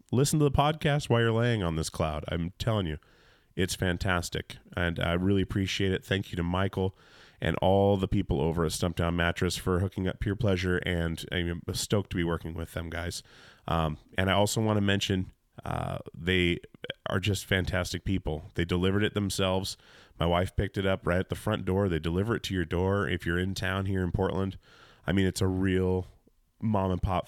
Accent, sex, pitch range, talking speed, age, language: American, male, 85-100 Hz, 205 wpm, 30-49, English